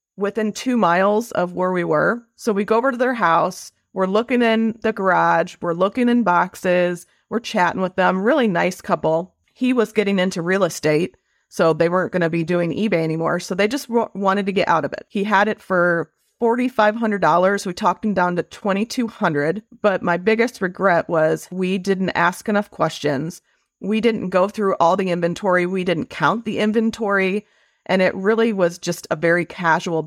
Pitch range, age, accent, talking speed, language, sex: 170-210 Hz, 30-49, American, 190 wpm, English, female